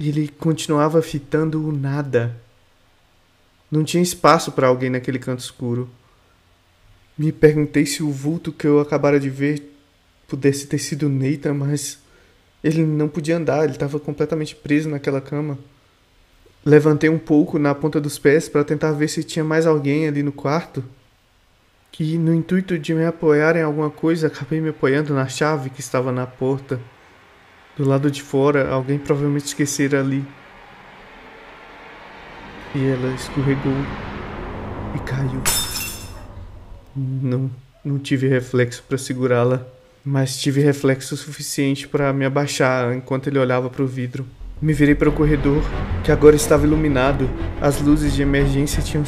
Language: Portuguese